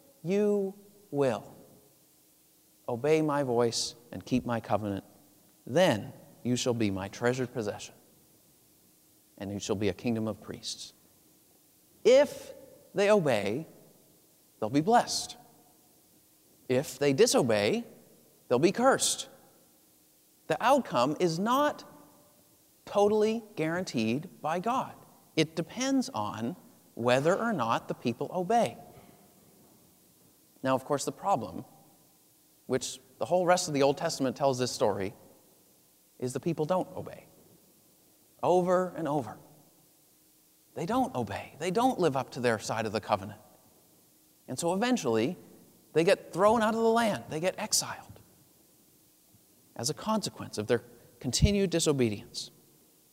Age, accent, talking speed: 40-59, American, 125 wpm